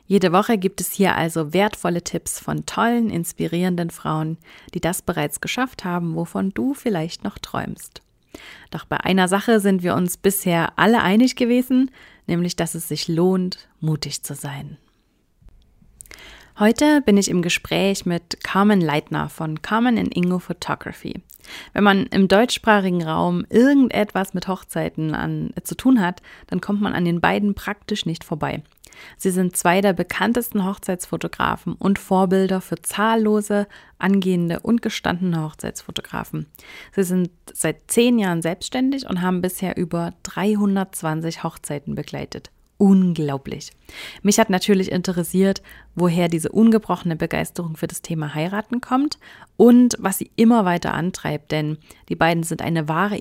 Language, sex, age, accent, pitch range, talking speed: German, female, 30-49, German, 165-210 Hz, 140 wpm